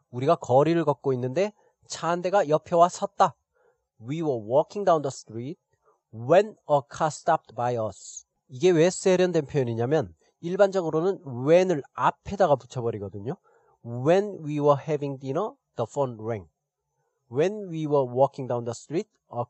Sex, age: male, 30-49